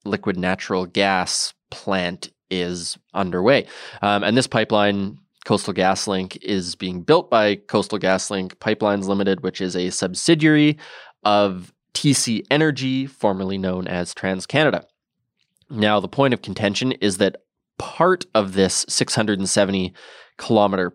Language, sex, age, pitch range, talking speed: English, male, 20-39, 95-115 Hz, 125 wpm